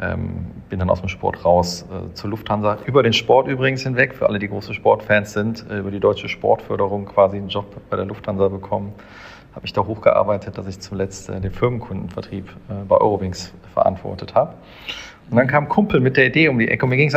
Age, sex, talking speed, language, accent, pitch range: 40-59, male, 220 wpm, German, German, 100-115 Hz